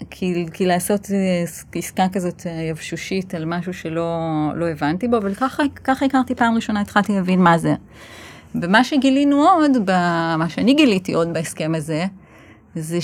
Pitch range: 160-205 Hz